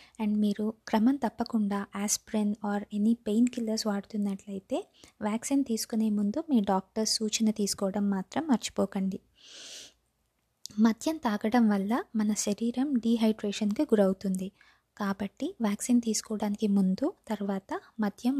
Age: 20-39